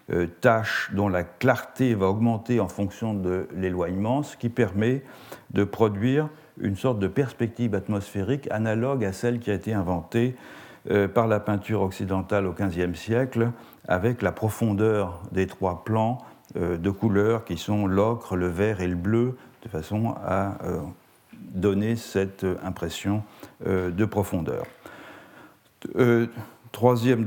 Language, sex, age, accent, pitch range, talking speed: French, male, 60-79, French, 95-120 Hz, 130 wpm